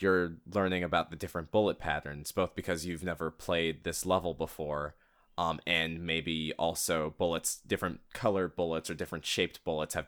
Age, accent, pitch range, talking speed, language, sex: 20-39, American, 80-95 Hz, 165 wpm, English, male